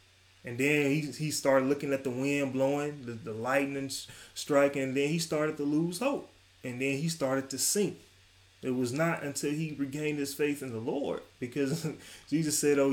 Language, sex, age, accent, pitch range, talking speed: English, male, 20-39, American, 120-155 Hz, 200 wpm